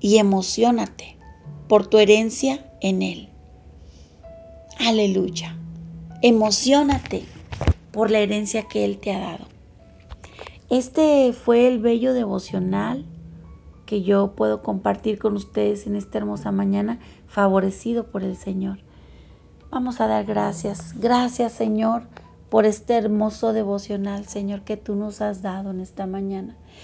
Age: 40-59